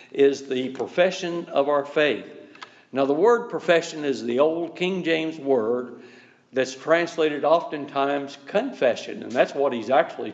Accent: American